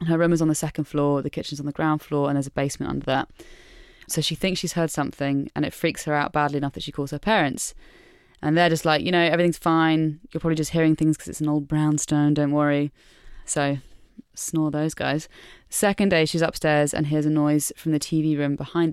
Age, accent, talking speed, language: 20-39, British, 235 wpm, English